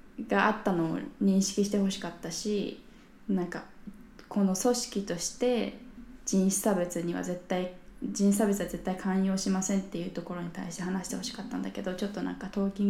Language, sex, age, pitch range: Japanese, female, 20-39, 180-215 Hz